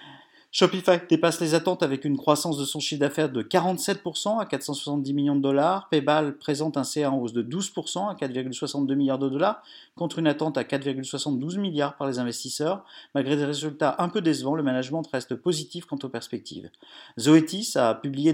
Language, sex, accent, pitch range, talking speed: French, male, French, 135-170 Hz, 185 wpm